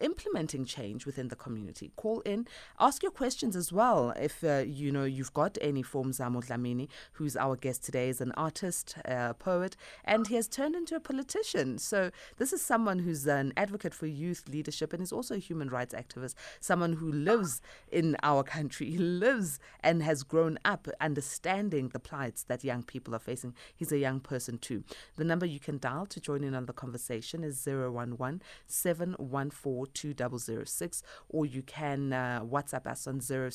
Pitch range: 130-175 Hz